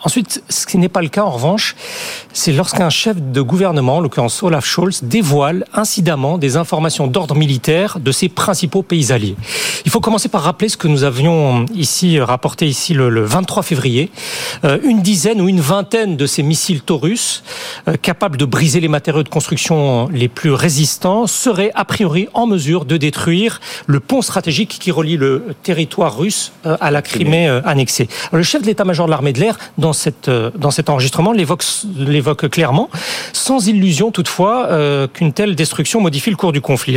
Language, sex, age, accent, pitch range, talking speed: French, male, 40-59, French, 155-215 Hz, 180 wpm